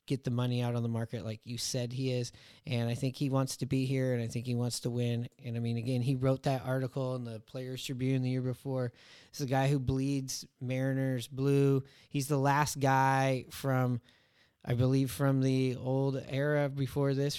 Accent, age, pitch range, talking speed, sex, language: American, 30-49, 125-140 Hz, 215 wpm, male, English